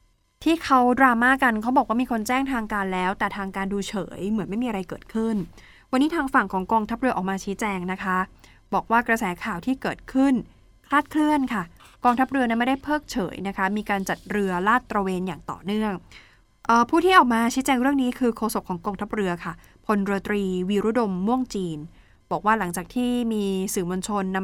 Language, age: Thai, 20-39